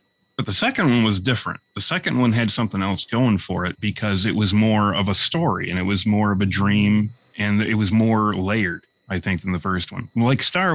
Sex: male